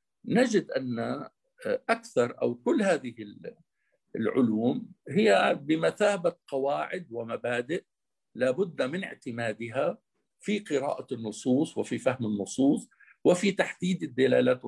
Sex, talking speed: male, 95 wpm